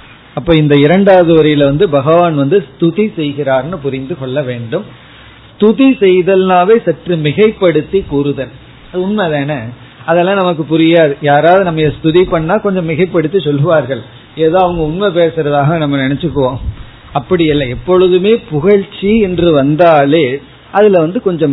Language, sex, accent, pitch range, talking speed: Tamil, male, native, 140-180 Hz, 45 wpm